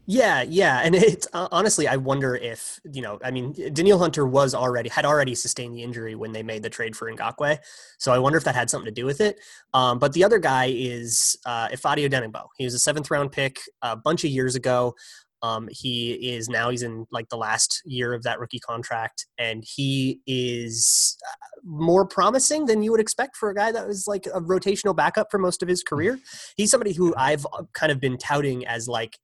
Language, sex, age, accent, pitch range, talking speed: English, male, 20-39, American, 125-155 Hz, 220 wpm